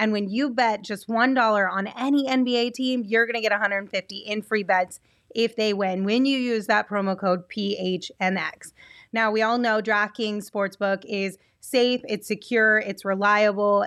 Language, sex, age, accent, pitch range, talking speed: English, female, 20-39, American, 190-235 Hz, 175 wpm